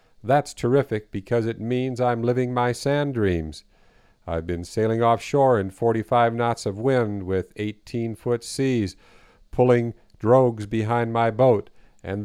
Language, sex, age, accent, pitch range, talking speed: English, male, 50-69, American, 105-130 Hz, 135 wpm